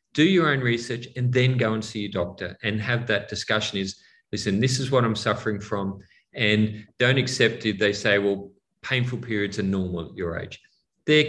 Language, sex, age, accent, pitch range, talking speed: English, male, 40-59, Australian, 95-115 Hz, 200 wpm